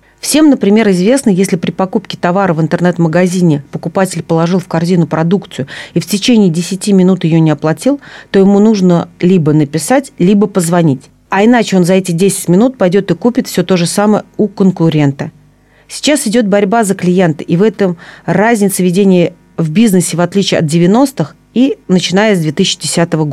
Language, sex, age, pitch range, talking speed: Russian, female, 40-59, 160-205 Hz, 165 wpm